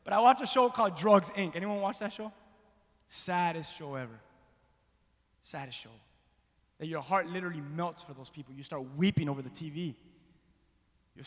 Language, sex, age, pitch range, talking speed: English, male, 20-39, 145-195 Hz, 170 wpm